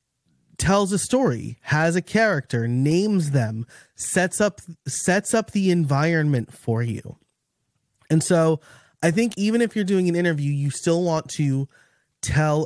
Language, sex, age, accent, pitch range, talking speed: English, male, 20-39, American, 125-165 Hz, 145 wpm